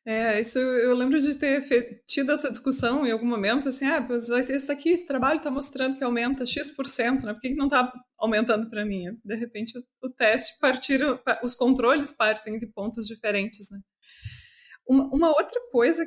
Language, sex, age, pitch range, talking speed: Portuguese, female, 20-39, 210-270 Hz, 180 wpm